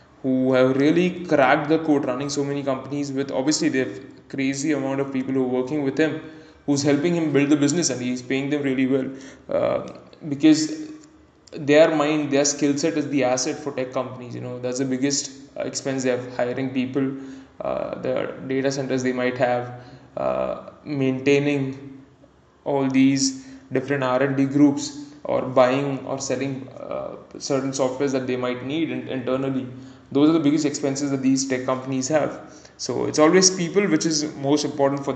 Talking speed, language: 180 wpm, English